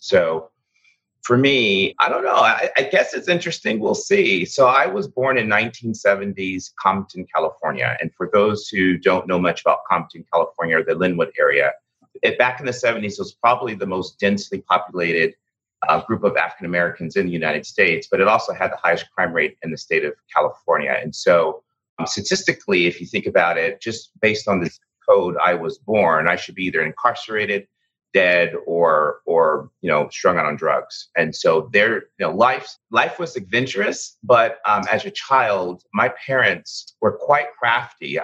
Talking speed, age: 180 wpm, 30-49